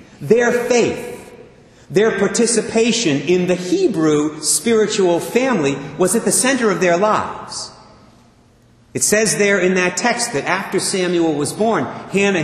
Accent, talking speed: American, 135 wpm